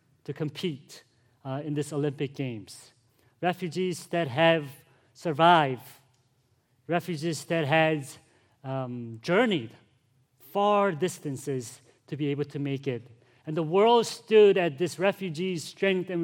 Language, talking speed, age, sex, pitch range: English, 120 wpm, 40-59, male, 130-175 Hz